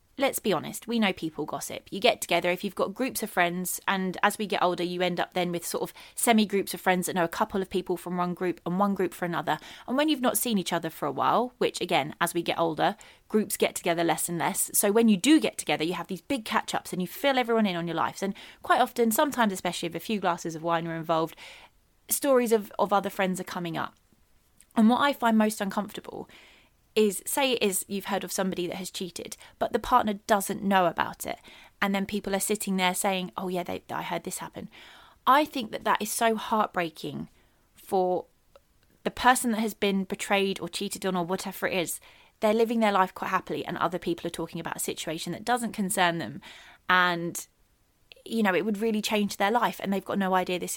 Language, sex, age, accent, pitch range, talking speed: English, female, 20-39, British, 180-220 Hz, 235 wpm